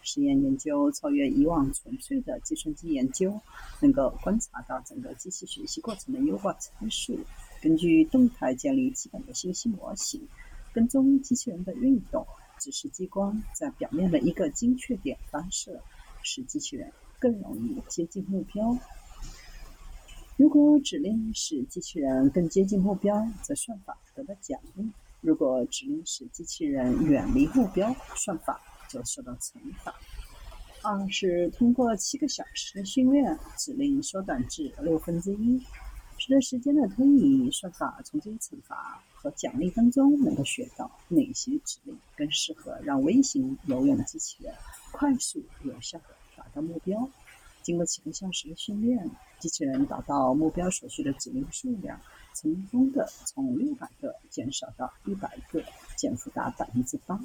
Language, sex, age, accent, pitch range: Chinese, female, 50-69, native, 200-285 Hz